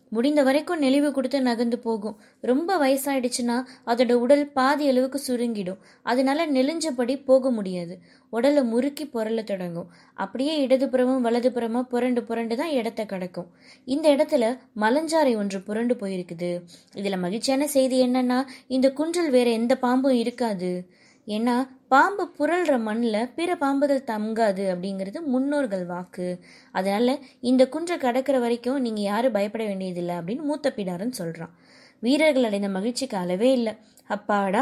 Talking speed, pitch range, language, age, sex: 130 wpm, 210-270 Hz, Tamil, 20-39, female